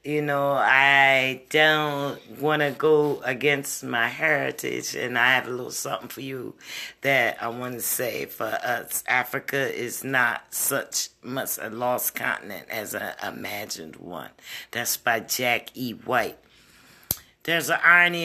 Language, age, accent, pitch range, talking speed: English, 40-59, American, 125-150 Hz, 145 wpm